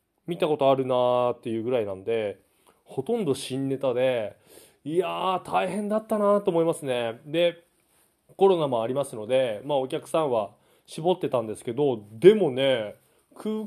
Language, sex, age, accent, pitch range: Japanese, male, 20-39, native, 130-205 Hz